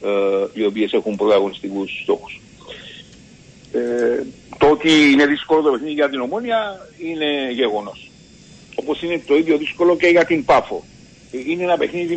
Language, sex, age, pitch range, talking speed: Greek, male, 60-79, 140-200 Hz, 150 wpm